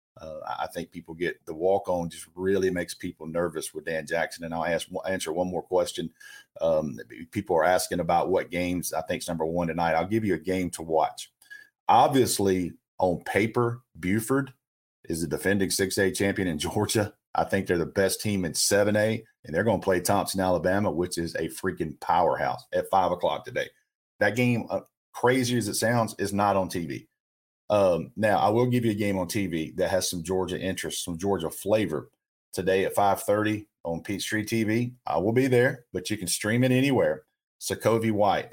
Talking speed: 195 wpm